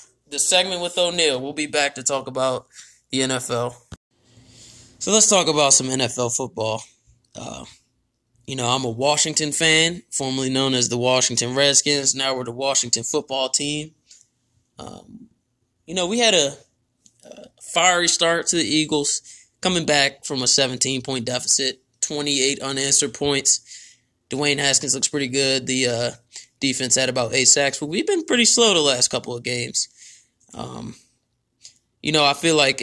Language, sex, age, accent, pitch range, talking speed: English, male, 20-39, American, 125-155 Hz, 160 wpm